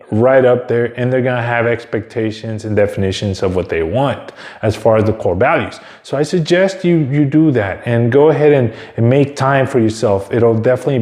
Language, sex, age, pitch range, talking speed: English, male, 20-39, 110-130 Hz, 210 wpm